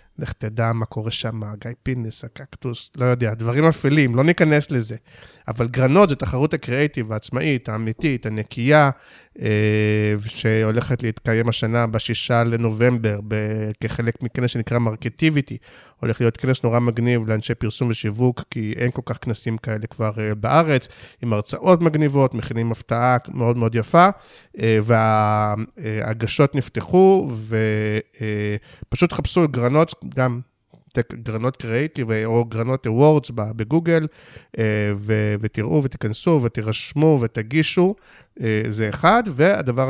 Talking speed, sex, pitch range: 120 wpm, male, 110-130 Hz